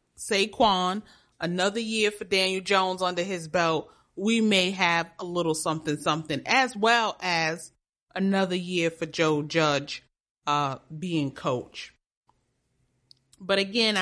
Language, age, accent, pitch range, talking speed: English, 30-49, American, 150-195 Hz, 120 wpm